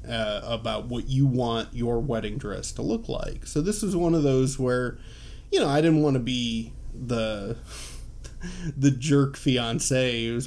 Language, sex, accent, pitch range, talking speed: English, male, American, 115-140 Hz, 180 wpm